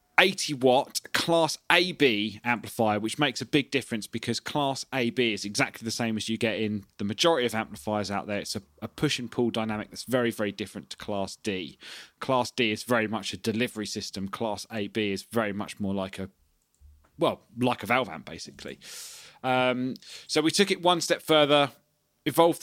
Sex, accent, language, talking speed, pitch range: male, British, English, 190 wpm, 105-125 Hz